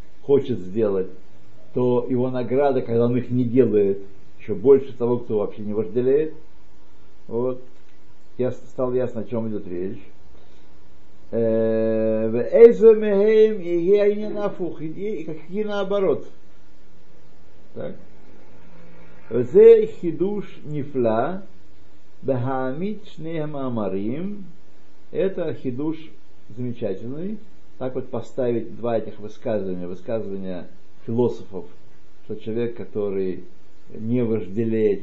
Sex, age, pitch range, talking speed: male, 60-79, 100-140 Hz, 75 wpm